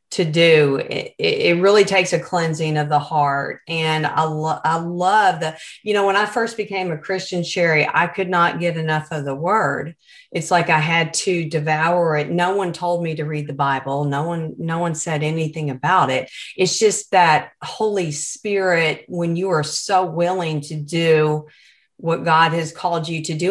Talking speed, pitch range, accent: 190 wpm, 155-185 Hz, American